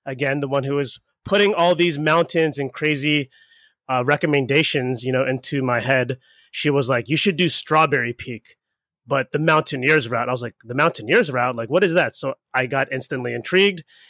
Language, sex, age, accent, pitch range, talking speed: English, male, 30-49, American, 130-165 Hz, 190 wpm